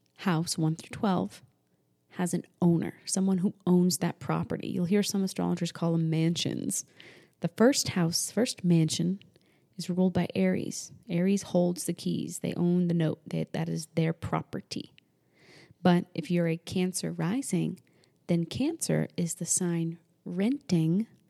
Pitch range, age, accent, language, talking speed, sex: 170-205 Hz, 20-39, American, English, 145 wpm, female